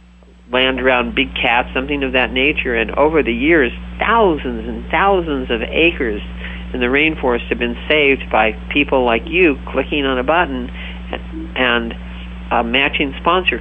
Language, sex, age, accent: English, male, 50-69, American